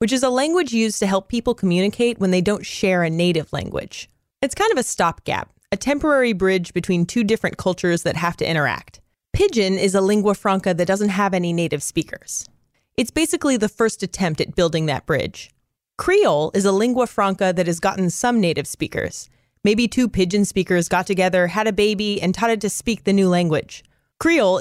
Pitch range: 175-230 Hz